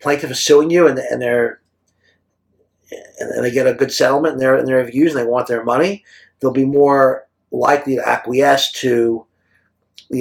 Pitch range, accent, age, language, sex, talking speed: 120-170 Hz, American, 50-69, English, male, 190 wpm